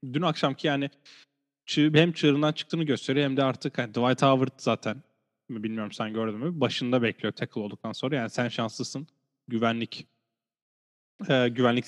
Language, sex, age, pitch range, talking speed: Turkish, male, 10-29, 115-135 Hz, 140 wpm